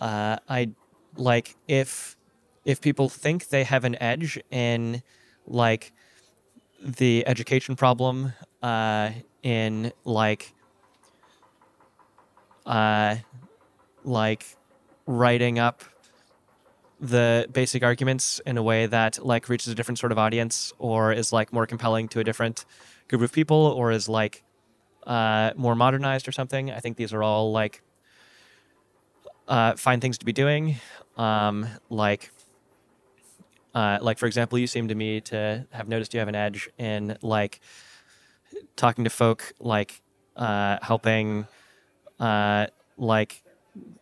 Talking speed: 130 wpm